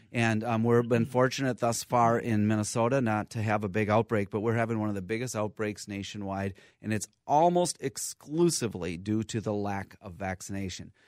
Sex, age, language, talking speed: male, 30-49, English, 185 wpm